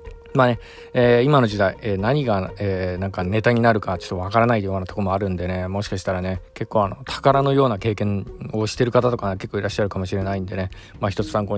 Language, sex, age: Japanese, male, 20-39